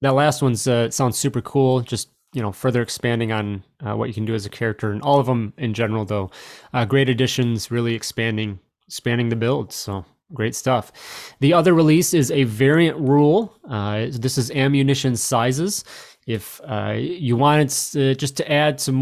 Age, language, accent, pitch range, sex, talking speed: 30-49, English, American, 120-145 Hz, male, 190 wpm